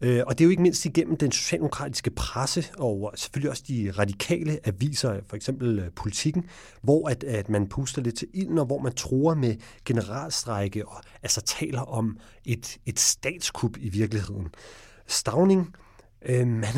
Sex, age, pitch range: male, 40-59, 105-135 Hz